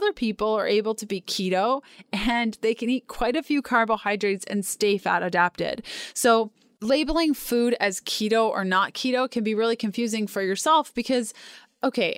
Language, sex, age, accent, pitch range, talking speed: English, female, 20-39, American, 195-240 Hz, 175 wpm